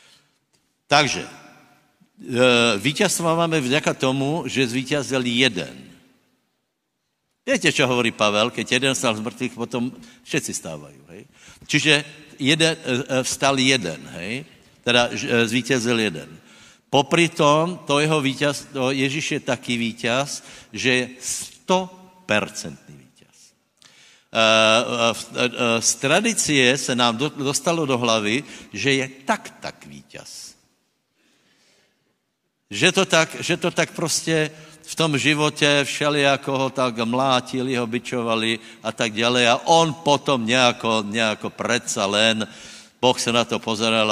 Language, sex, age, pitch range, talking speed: Slovak, male, 60-79, 115-145 Hz, 115 wpm